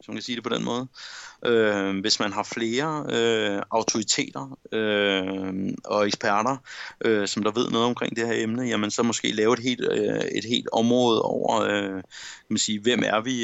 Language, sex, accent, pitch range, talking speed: Danish, male, native, 100-115 Hz, 200 wpm